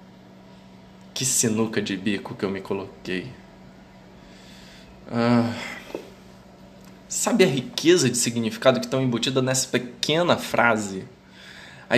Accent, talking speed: Brazilian, 105 wpm